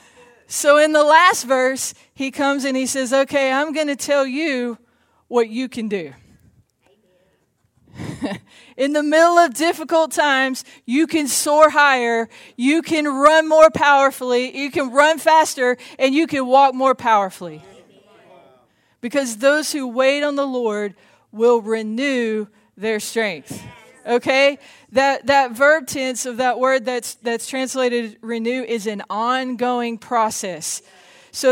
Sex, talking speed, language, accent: female, 140 wpm, English, American